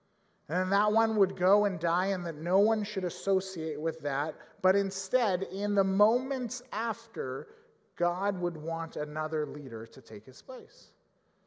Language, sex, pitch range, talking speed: English, male, 170-220 Hz, 155 wpm